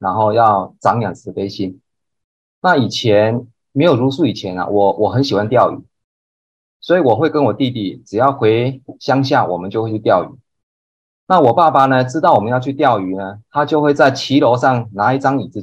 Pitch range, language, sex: 100-135 Hz, Chinese, male